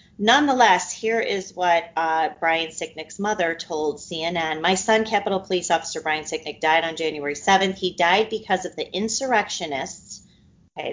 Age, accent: 30-49, American